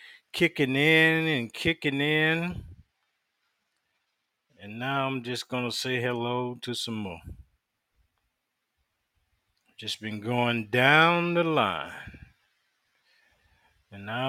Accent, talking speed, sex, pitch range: American, 95 wpm, male, 115-160 Hz